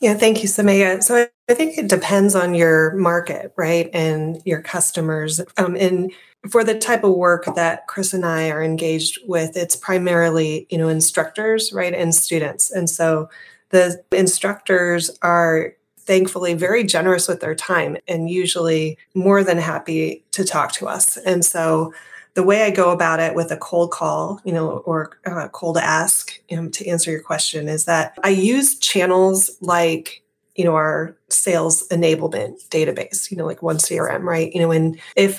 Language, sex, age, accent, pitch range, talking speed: English, female, 30-49, American, 160-185 Hz, 175 wpm